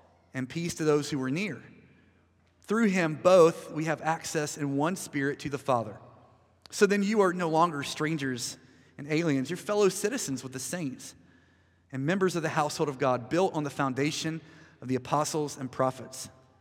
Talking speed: 180 wpm